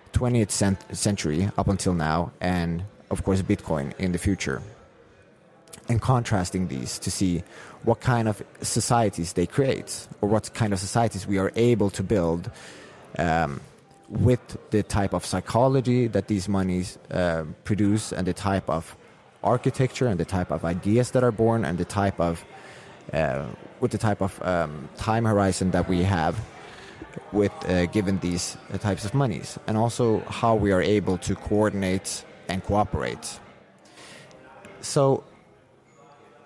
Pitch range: 90-115 Hz